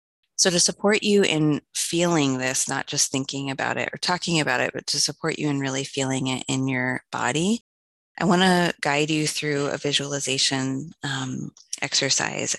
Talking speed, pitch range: 175 wpm, 135-165 Hz